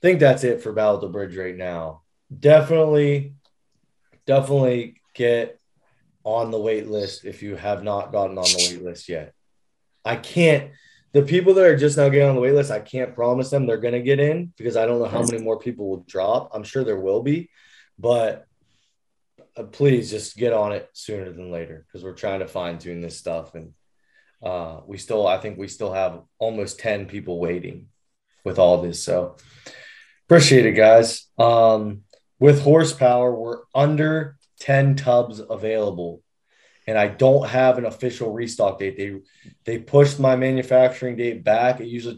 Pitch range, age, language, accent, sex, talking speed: 100-135 Hz, 20-39, English, American, male, 180 wpm